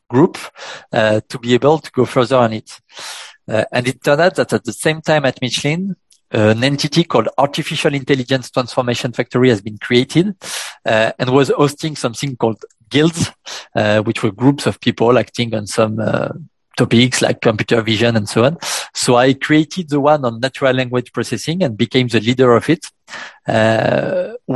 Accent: French